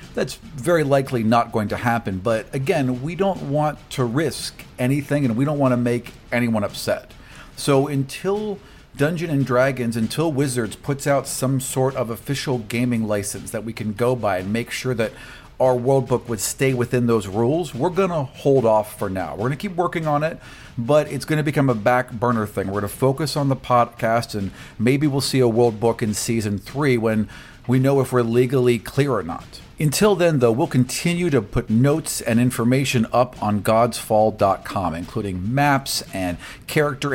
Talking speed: 195 wpm